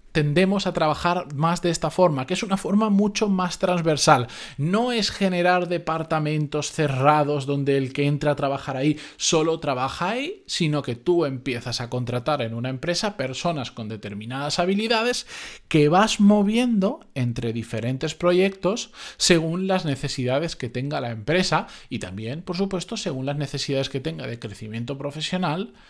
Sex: male